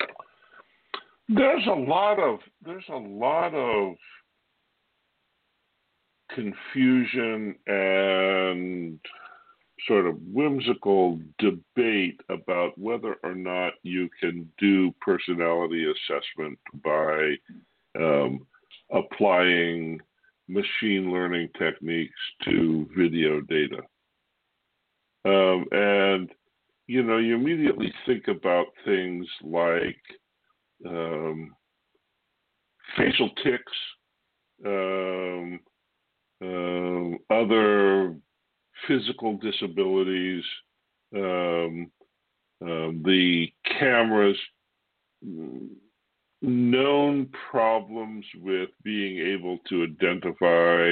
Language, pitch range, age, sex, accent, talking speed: English, 85-105 Hz, 60-79, female, American, 70 wpm